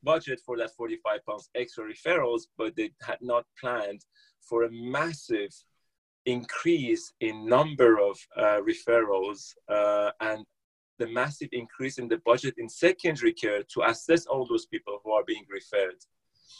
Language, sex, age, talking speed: English, male, 30-49, 150 wpm